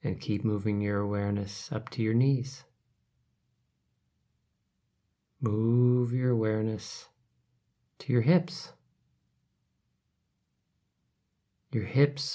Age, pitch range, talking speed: 40-59, 110-135 Hz, 85 wpm